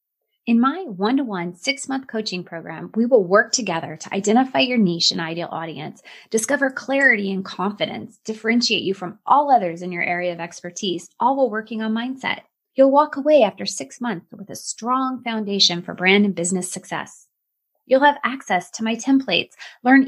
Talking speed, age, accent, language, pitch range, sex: 175 wpm, 20-39, American, English, 185-255 Hz, female